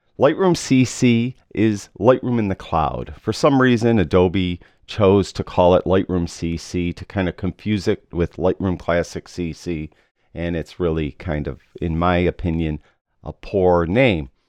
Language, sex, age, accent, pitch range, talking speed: English, male, 40-59, American, 80-110 Hz, 155 wpm